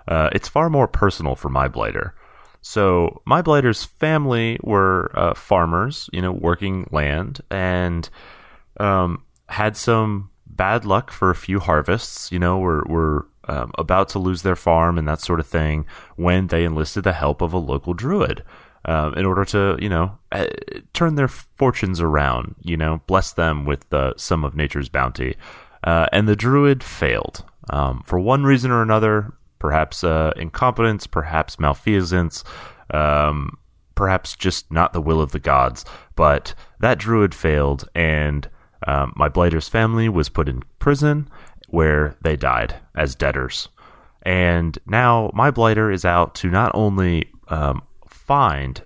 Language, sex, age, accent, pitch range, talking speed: English, male, 30-49, American, 75-105 Hz, 155 wpm